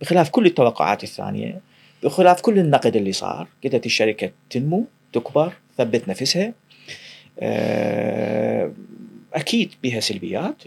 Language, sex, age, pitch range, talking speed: Arabic, male, 40-59, 130-185 Hz, 100 wpm